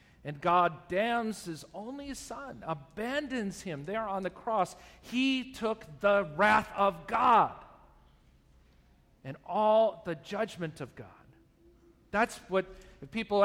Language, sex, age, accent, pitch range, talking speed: English, male, 50-69, American, 140-205 Hz, 120 wpm